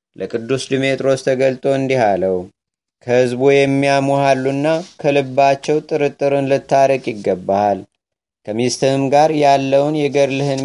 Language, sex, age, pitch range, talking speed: Amharic, male, 30-49, 125-140 Hz, 80 wpm